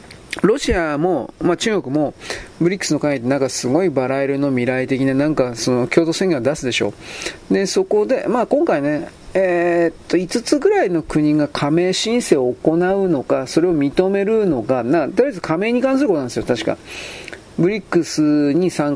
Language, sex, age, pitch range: Japanese, male, 40-59, 140-220 Hz